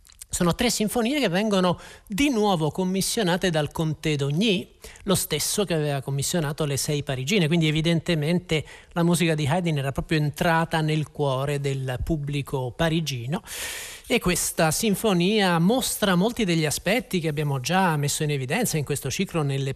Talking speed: 150 wpm